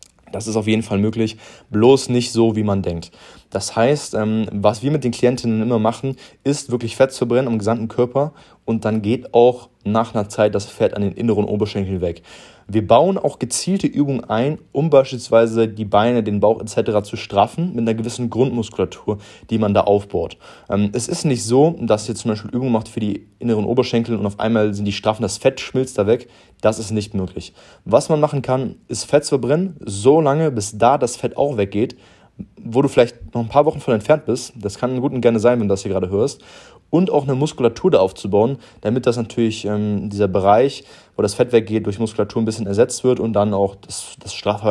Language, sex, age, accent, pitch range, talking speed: German, male, 20-39, German, 105-120 Hz, 215 wpm